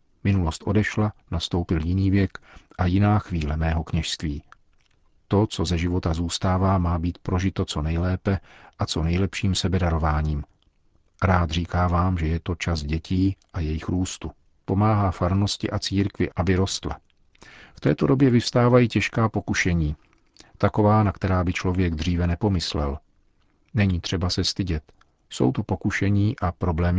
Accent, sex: native, male